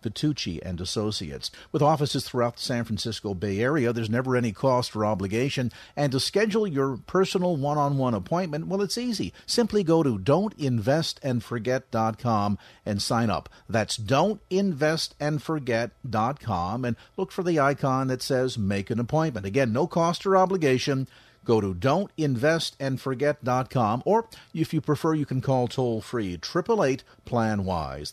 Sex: male